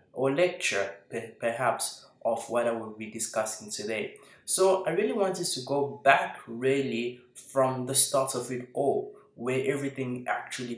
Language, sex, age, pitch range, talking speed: English, male, 20-39, 120-150 Hz, 150 wpm